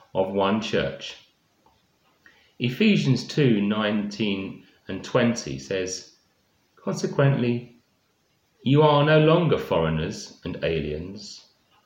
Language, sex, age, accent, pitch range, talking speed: English, male, 30-49, British, 90-125 Hz, 85 wpm